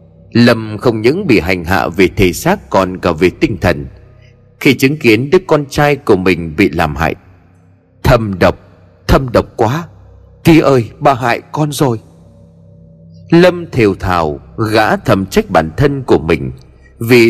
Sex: male